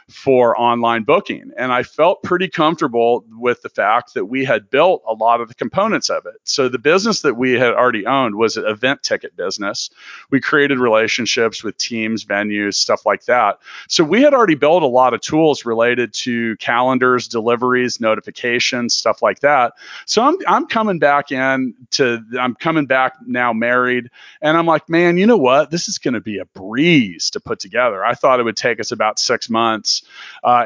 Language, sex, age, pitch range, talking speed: English, male, 40-59, 115-155 Hz, 195 wpm